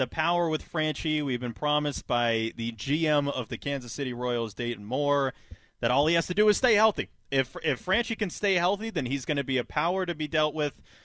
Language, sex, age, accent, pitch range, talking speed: English, male, 30-49, American, 115-155 Hz, 235 wpm